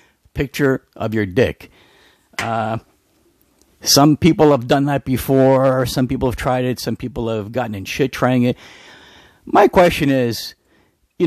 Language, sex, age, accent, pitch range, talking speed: English, male, 50-69, American, 115-150 Hz, 150 wpm